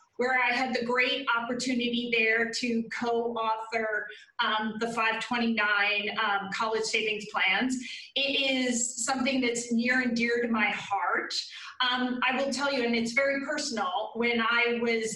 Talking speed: 145 wpm